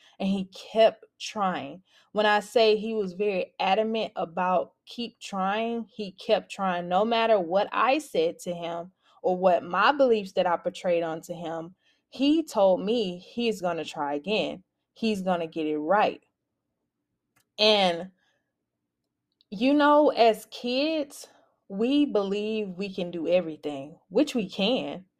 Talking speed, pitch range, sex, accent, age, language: 145 wpm, 180-235 Hz, female, American, 20-39, English